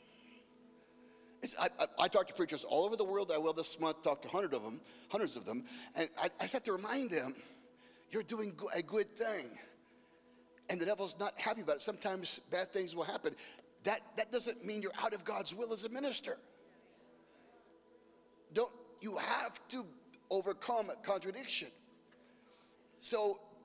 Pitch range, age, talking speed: 145-225 Hz, 40-59, 170 wpm